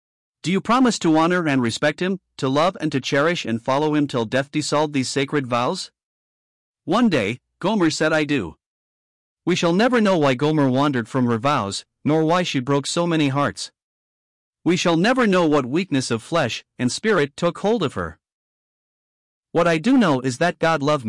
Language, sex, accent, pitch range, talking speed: English, male, American, 125-170 Hz, 190 wpm